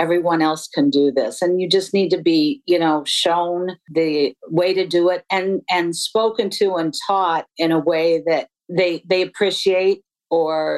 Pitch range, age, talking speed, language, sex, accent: 155-185 Hz, 50-69, 185 wpm, English, female, American